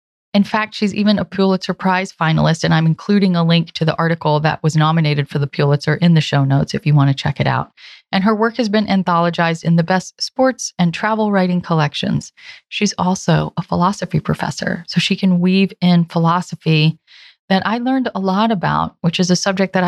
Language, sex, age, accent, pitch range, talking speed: English, female, 30-49, American, 170-205 Hz, 210 wpm